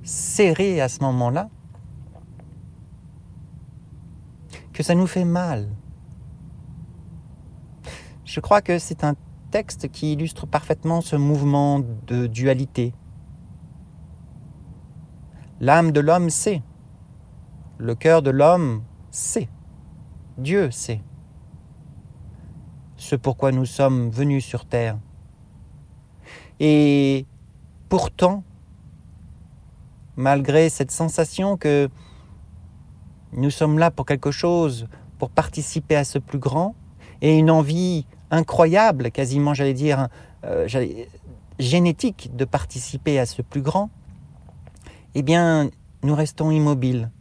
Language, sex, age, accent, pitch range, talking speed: French, male, 50-69, French, 120-160 Hz, 100 wpm